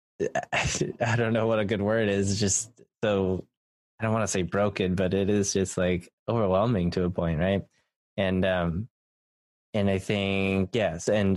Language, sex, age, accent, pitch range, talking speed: English, male, 20-39, American, 90-100 Hz, 175 wpm